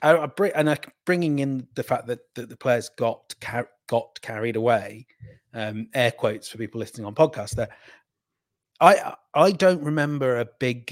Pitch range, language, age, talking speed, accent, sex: 115-145 Hz, English, 30-49, 150 wpm, British, male